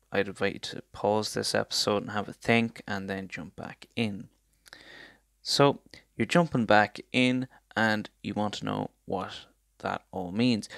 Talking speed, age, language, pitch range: 165 wpm, 10-29, English, 100-120 Hz